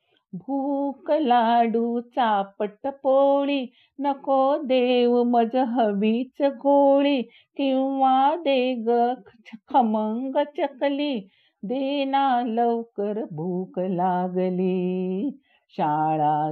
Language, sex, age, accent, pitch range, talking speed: Marathi, female, 50-69, native, 185-270 Hz, 70 wpm